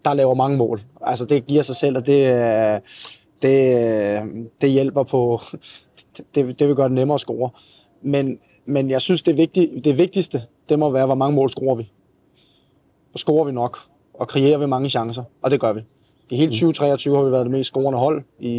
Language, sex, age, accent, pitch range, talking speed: Danish, male, 20-39, native, 120-140 Hz, 205 wpm